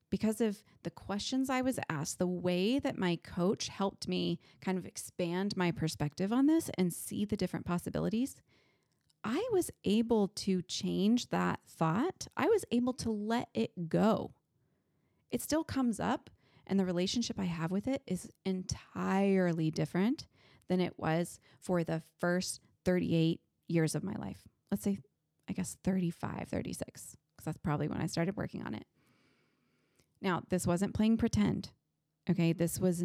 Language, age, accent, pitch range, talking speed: English, 20-39, American, 165-215 Hz, 160 wpm